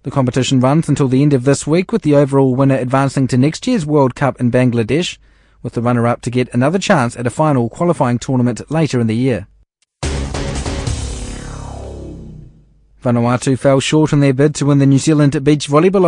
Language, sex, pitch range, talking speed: English, male, 125-155 Hz, 185 wpm